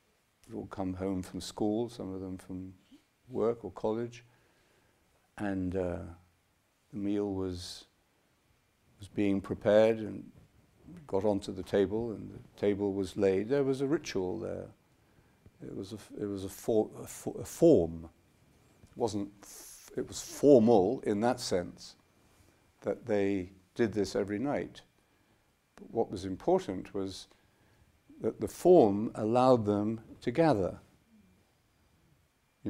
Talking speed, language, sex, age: 125 wpm, English, male, 50-69